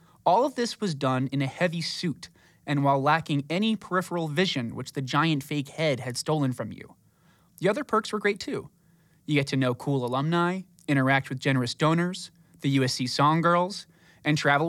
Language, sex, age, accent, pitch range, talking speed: English, male, 20-39, American, 130-170 Hz, 190 wpm